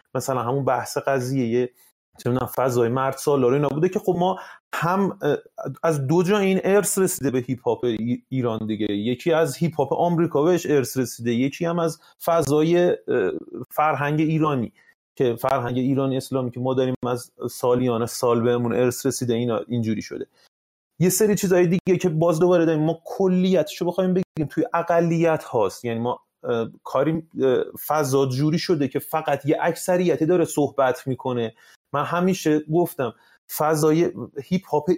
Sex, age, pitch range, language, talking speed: male, 30-49, 130-170 Hz, Persian, 155 wpm